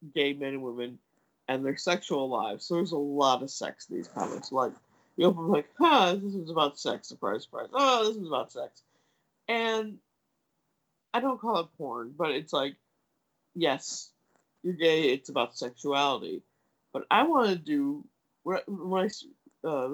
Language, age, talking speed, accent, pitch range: English, 50-69, 180 wpm, American, 135-190 Hz